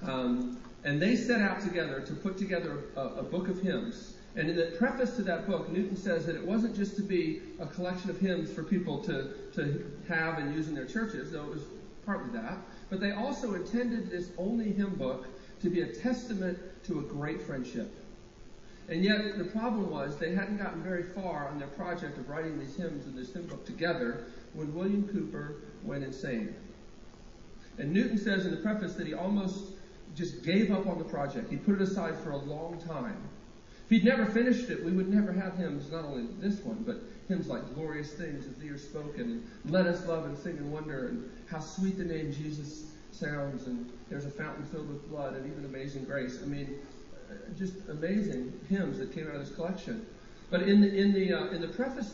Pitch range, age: 155-200 Hz, 40-59